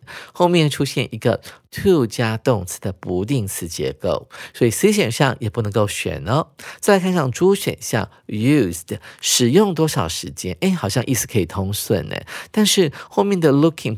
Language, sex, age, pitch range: Chinese, male, 50-69, 105-150 Hz